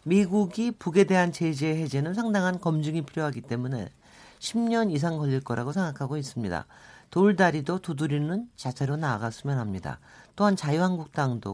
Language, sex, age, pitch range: Korean, male, 40-59, 130-190 Hz